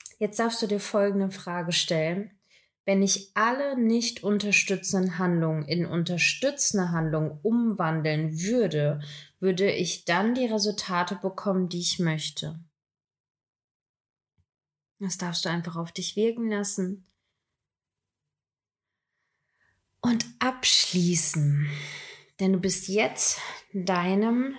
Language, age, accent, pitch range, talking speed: German, 20-39, German, 175-215 Hz, 100 wpm